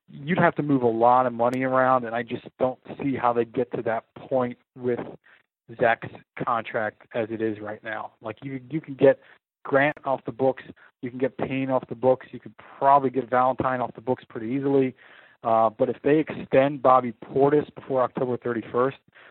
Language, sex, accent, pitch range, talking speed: English, male, American, 120-140 Hz, 200 wpm